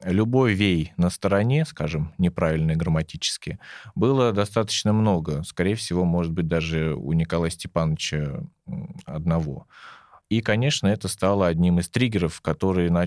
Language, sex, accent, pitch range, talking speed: Russian, male, native, 85-105 Hz, 125 wpm